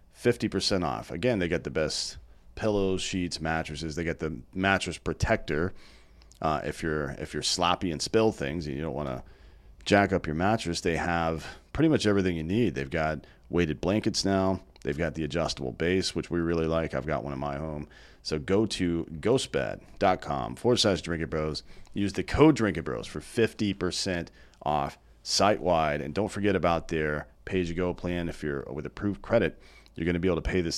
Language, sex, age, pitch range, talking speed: English, male, 40-59, 75-95 Hz, 190 wpm